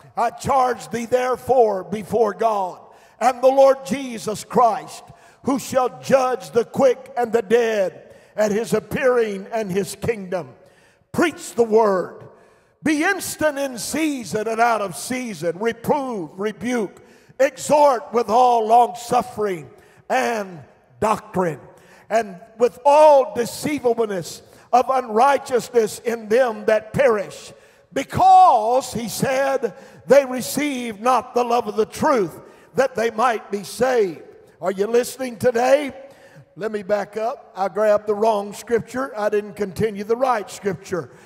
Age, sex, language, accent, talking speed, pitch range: 50-69, male, English, American, 130 wpm, 215-260 Hz